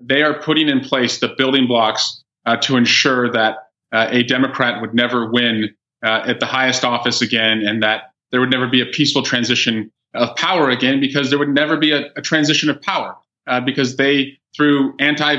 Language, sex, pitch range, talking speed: English, male, 125-150 Hz, 200 wpm